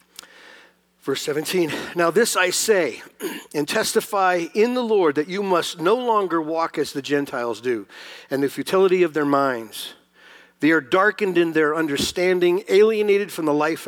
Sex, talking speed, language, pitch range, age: male, 160 wpm, English, 140-185 Hz, 50-69